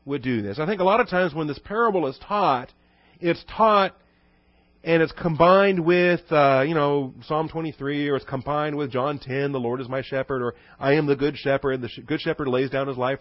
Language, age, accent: English, 40-59, American